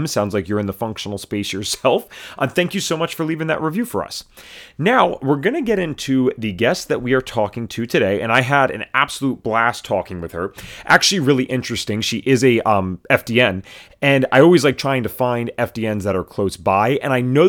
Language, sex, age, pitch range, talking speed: English, male, 30-49, 105-140 Hz, 225 wpm